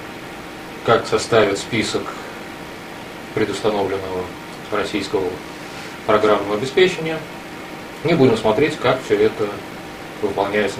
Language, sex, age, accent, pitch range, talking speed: Russian, male, 30-49, native, 105-155 Hz, 80 wpm